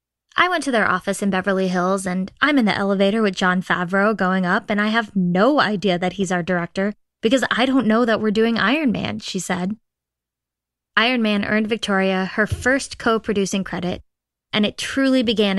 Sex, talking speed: female, 195 wpm